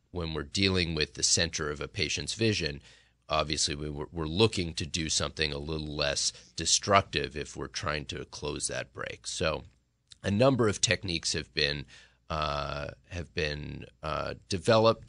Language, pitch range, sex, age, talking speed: English, 75-90 Hz, male, 30-49, 160 wpm